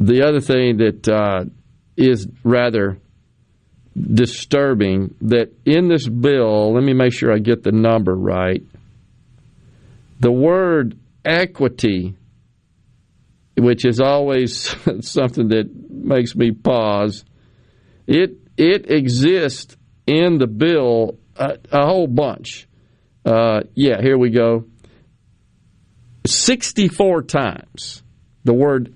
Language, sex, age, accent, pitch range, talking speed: English, male, 50-69, American, 115-145 Hz, 105 wpm